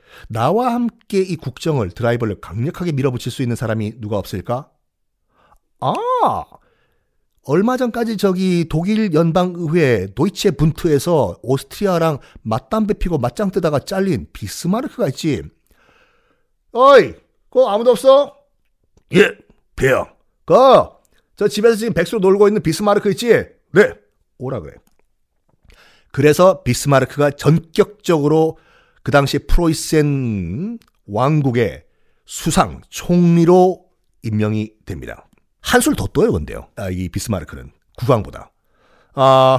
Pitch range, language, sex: 115-185 Hz, Korean, male